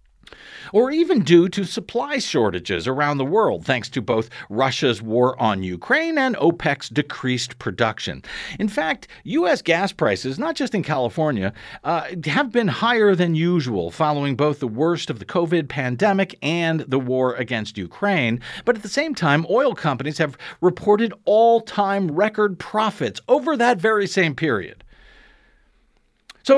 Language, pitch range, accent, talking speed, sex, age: English, 135-200 Hz, American, 150 wpm, male, 50-69